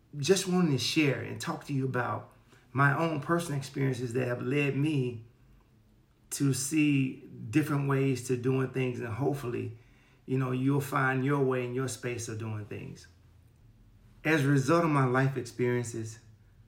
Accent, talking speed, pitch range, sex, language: American, 160 wpm, 115-135 Hz, male, English